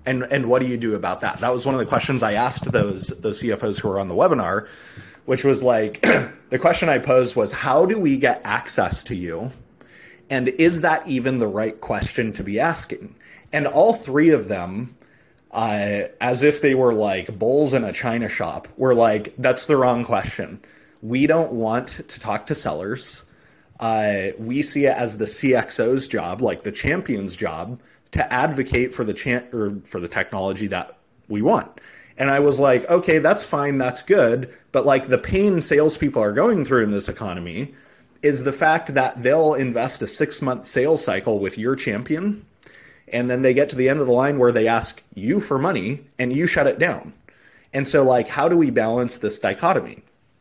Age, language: 30-49, English